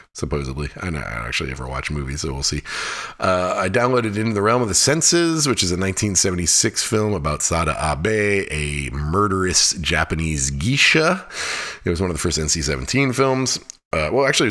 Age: 30-49